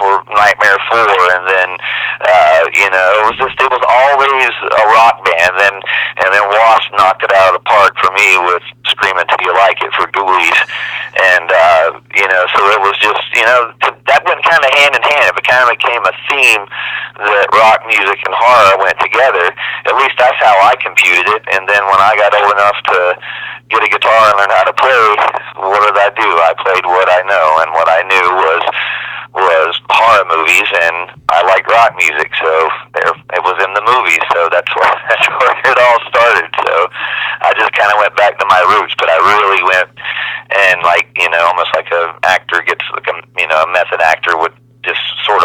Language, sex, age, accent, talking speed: English, male, 40-59, American, 210 wpm